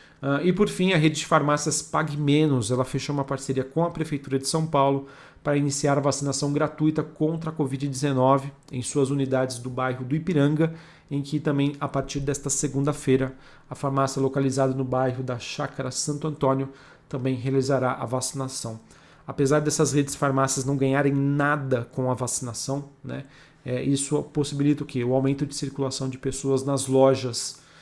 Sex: male